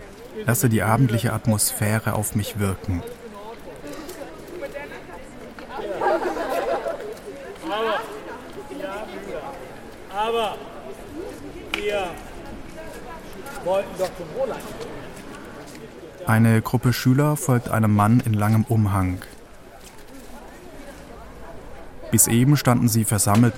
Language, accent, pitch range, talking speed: German, German, 105-130 Hz, 55 wpm